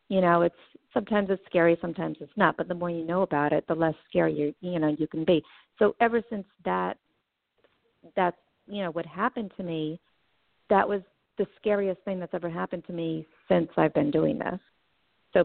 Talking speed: 200 wpm